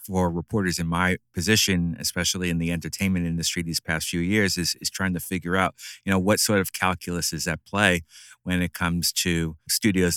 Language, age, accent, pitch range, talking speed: English, 30-49, American, 85-95 Hz, 200 wpm